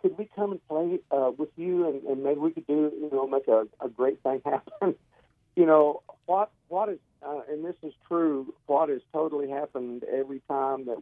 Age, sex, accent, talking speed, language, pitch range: 50-69, male, American, 210 wpm, English, 120-150 Hz